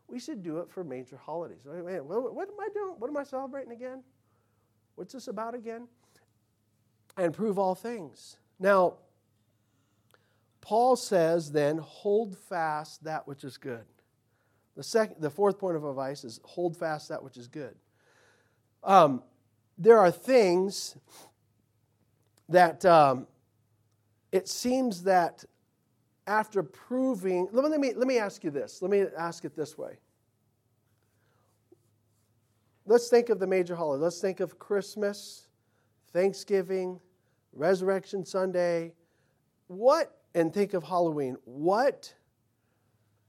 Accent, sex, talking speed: American, male, 125 wpm